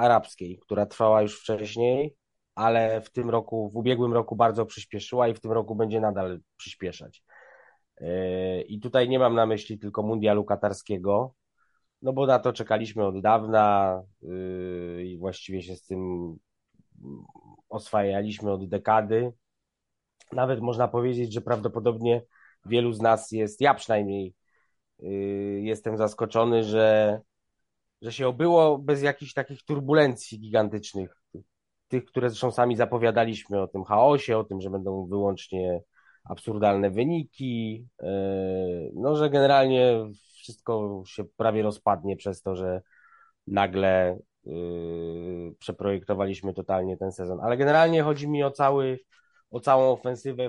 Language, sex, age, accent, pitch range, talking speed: Polish, male, 20-39, native, 100-120 Hz, 125 wpm